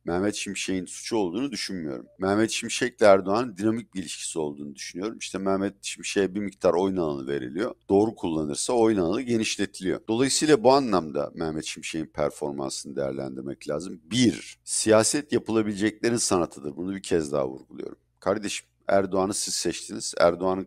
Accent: native